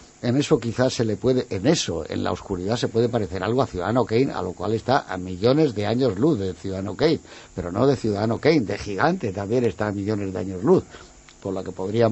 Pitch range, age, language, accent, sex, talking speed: 95-125 Hz, 60-79, Spanish, Spanish, male, 240 wpm